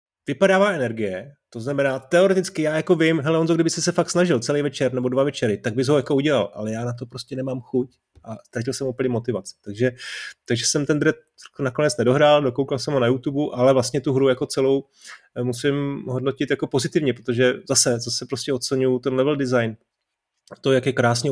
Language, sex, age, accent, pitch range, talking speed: Czech, male, 30-49, native, 120-140 Hz, 200 wpm